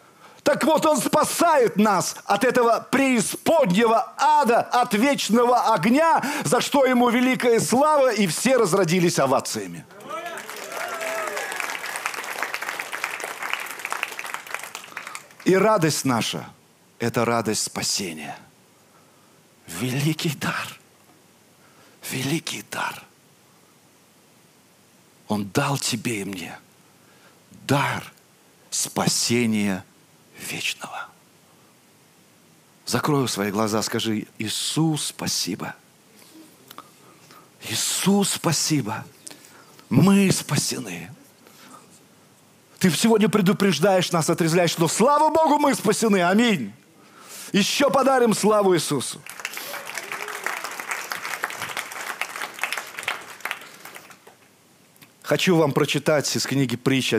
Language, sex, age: Russian, male, 50-69